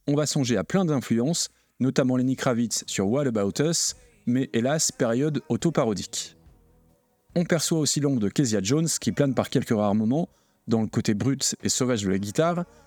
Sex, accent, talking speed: male, French, 180 wpm